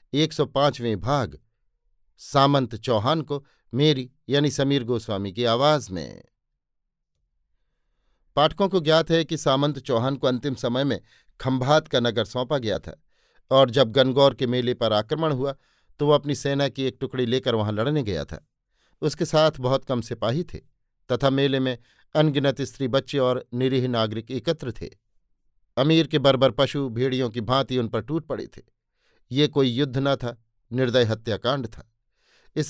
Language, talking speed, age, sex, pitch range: Hindi, 160 wpm, 50-69, male, 120-145 Hz